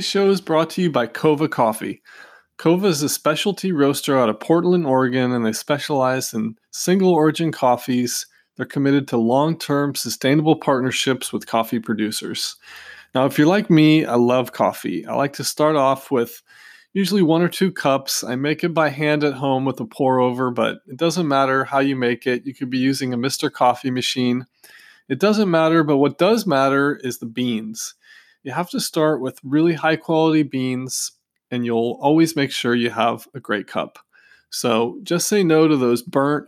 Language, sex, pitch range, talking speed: English, male, 125-160 Hz, 190 wpm